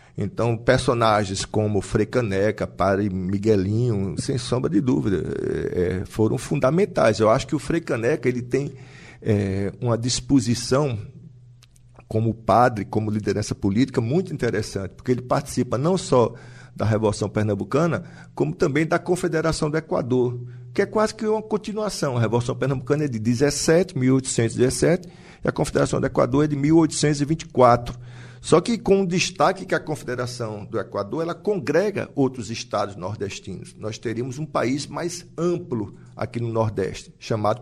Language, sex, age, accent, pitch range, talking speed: Portuguese, male, 40-59, Brazilian, 110-155 Hz, 140 wpm